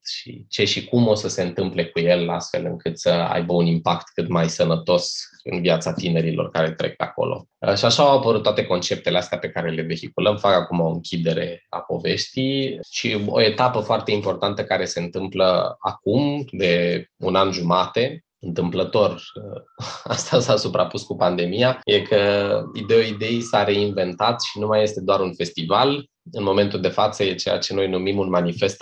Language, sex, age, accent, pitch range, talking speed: Romanian, male, 20-39, native, 90-110 Hz, 175 wpm